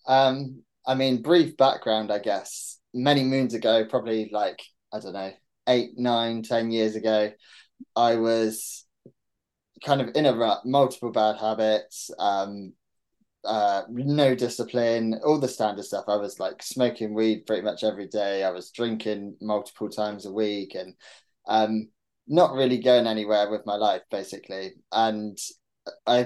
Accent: British